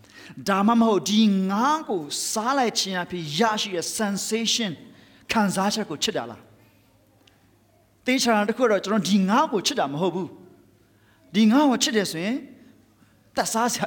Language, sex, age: English, male, 30-49